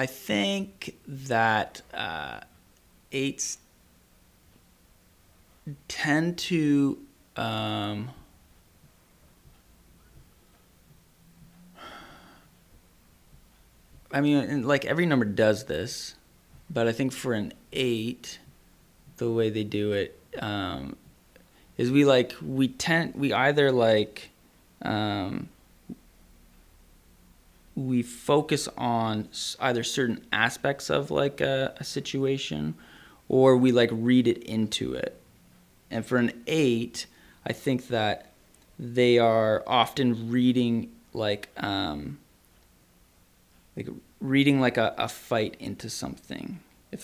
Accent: American